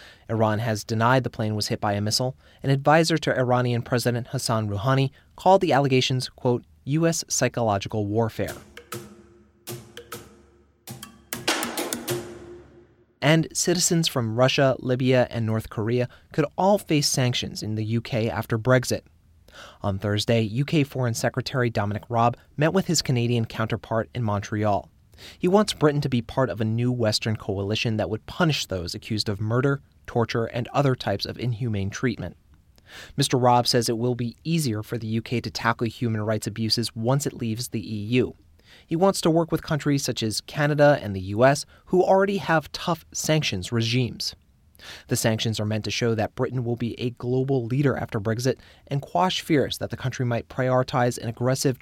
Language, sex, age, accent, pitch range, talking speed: English, male, 30-49, American, 110-135 Hz, 165 wpm